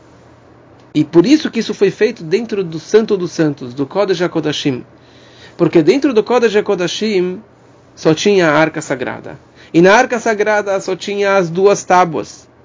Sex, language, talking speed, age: male, English, 155 wpm, 40-59